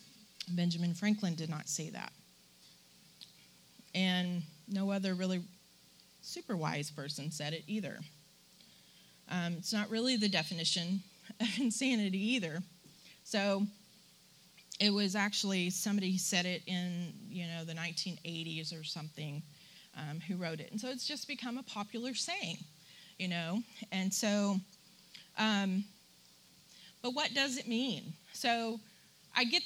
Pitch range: 175-245 Hz